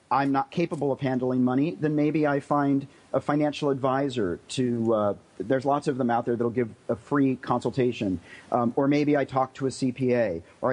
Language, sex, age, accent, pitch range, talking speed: English, male, 40-59, American, 125-155 Hz, 195 wpm